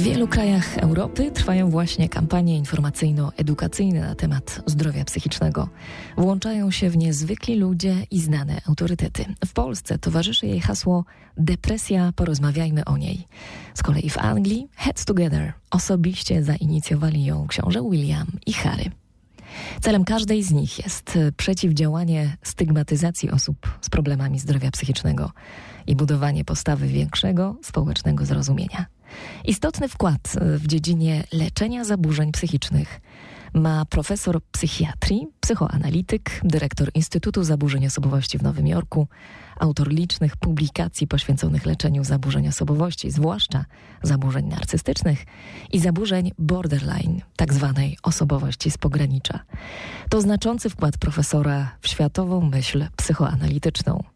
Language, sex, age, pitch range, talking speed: Polish, female, 20-39, 145-180 Hz, 115 wpm